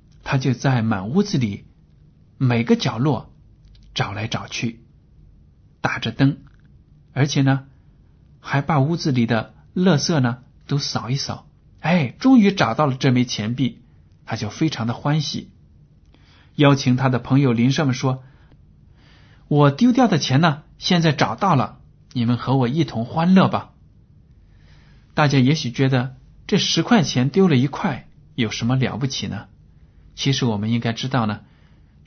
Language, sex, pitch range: Chinese, male, 115-150 Hz